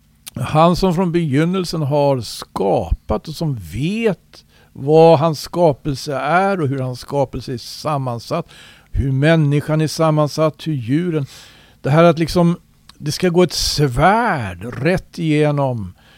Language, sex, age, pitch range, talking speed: Swedish, male, 60-79, 120-160 Hz, 135 wpm